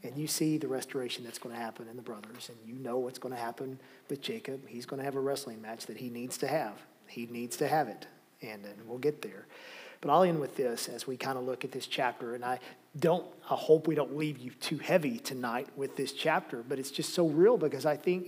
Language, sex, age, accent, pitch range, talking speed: English, male, 40-59, American, 135-160 Hz, 260 wpm